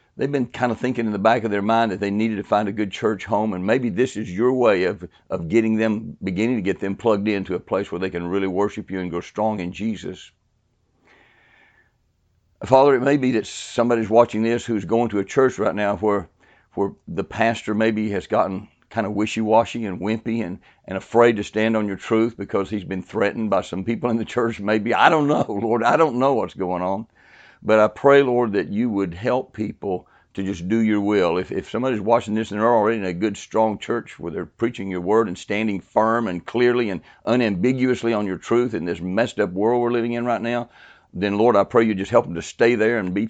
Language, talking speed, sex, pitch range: English, 235 wpm, male, 100-120 Hz